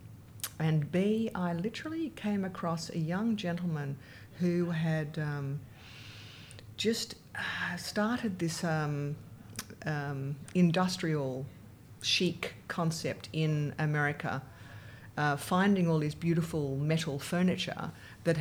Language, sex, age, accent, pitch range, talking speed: English, female, 50-69, Australian, 135-165 Hz, 100 wpm